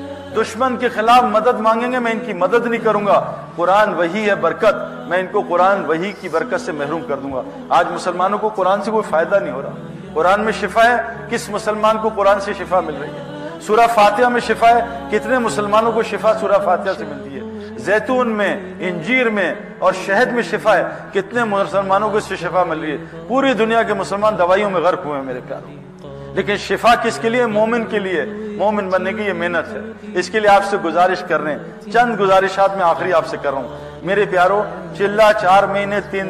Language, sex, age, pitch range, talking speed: Urdu, male, 50-69, 185-225 Hz, 225 wpm